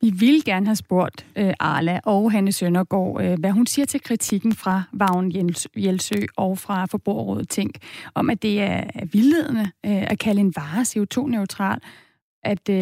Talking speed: 165 wpm